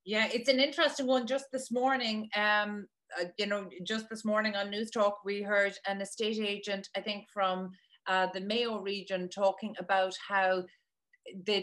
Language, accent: English, Irish